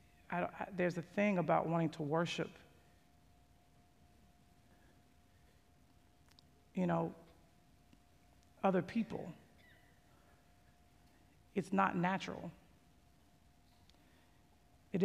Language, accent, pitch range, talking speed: English, American, 150-165 Hz, 70 wpm